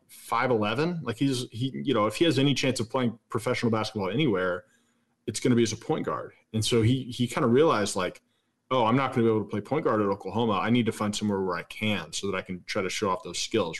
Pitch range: 105-120 Hz